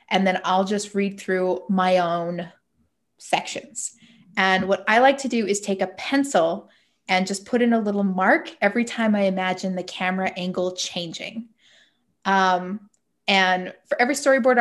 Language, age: English, 20-39